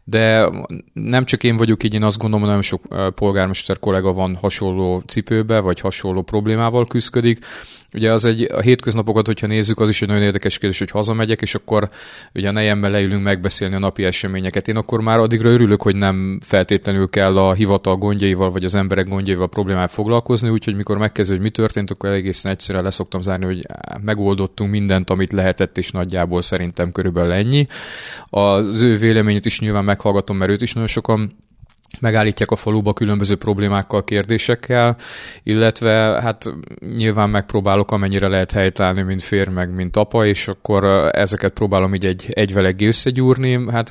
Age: 30-49